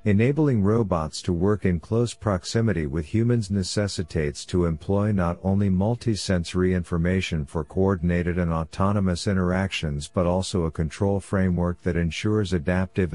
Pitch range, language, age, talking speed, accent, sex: 85-100 Hz, English, 50-69, 130 wpm, American, male